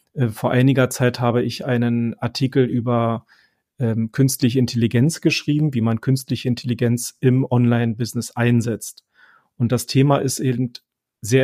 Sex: male